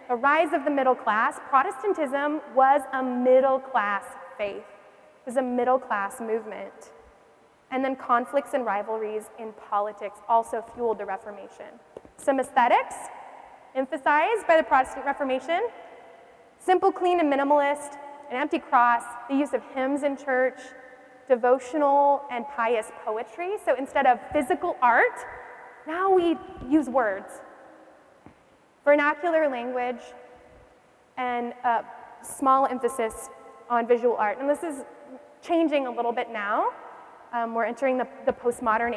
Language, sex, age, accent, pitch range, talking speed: English, female, 20-39, American, 240-290 Hz, 130 wpm